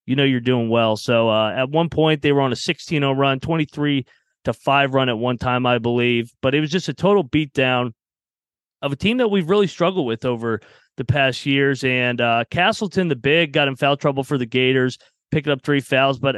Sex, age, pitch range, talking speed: male, 30-49, 125-150 Hz, 220 wpm